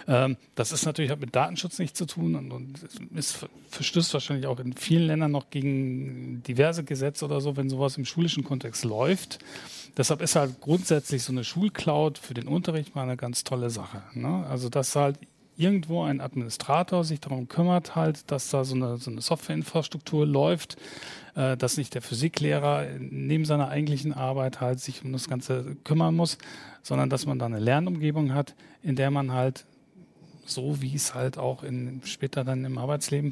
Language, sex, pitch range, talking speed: German, male, 130-155 Hz, 175 wpm